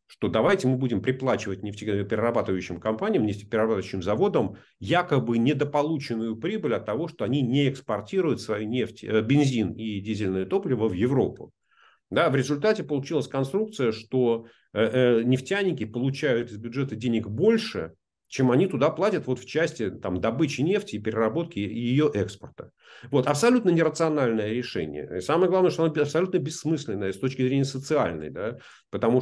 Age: 40-59